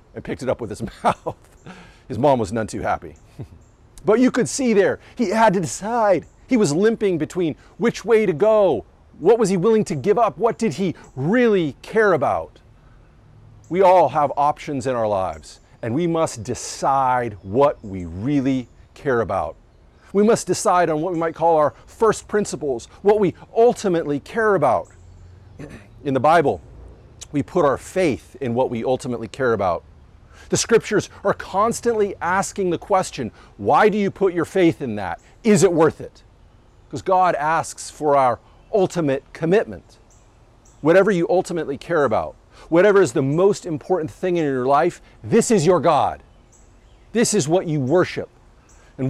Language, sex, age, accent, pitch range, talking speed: English, male, 40-59, American, 120-190 Hz, 170 wpm